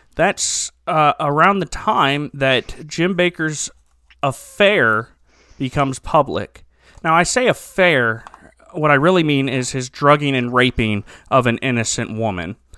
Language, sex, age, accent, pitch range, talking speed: English, male, 30-49, American, 125-150 Hz, 130 wpm